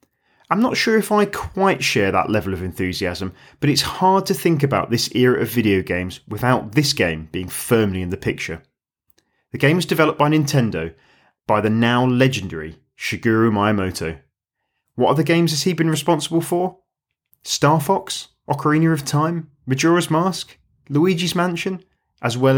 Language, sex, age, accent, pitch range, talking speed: English, male, 30-49, British, 100-145 Hz, 160 wpm